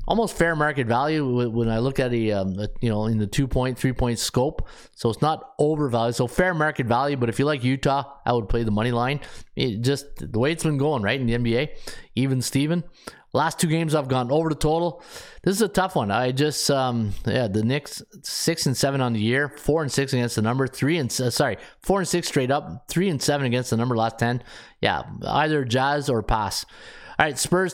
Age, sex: 20-39, male